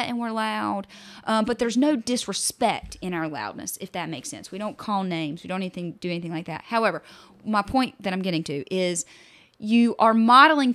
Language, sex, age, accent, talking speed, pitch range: English, female, 30-49, American, 200 wpm, 175-230 Hz